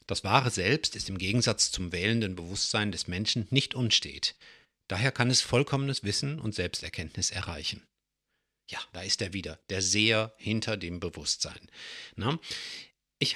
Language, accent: German, German